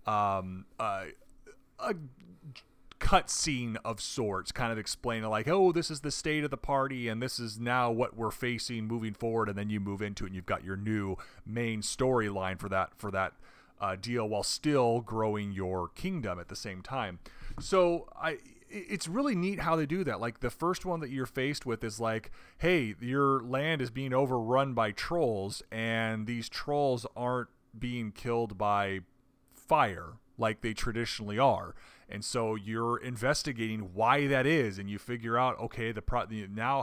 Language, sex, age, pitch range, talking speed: English, male, 30-49, 105-135 Hz, 180 wpm